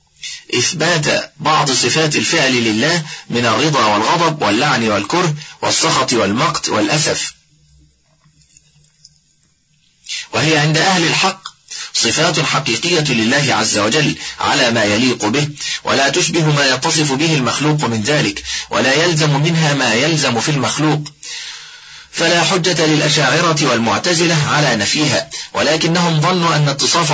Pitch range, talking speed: 130-165 Hz, 115 wpm